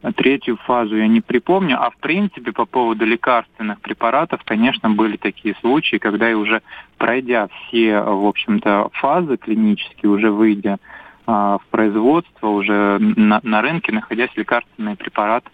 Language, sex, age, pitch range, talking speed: Russian, male, 20-39, 110-125 Hz, 140 wpm